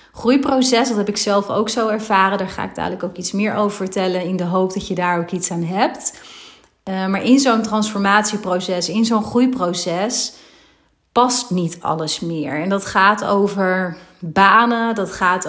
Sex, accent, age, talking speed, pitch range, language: female, Dutch, 30-49, 180 wpm, 180-210 Hz, Dutch